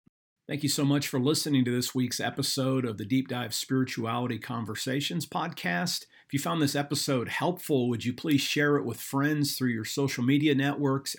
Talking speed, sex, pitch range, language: 190 wpm, male, 120-135 Hz, English